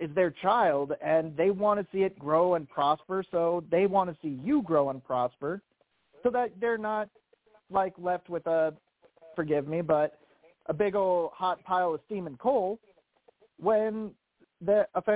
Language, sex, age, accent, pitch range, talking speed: English, male, 40-59, American, 150-190 Hz, 170 wpm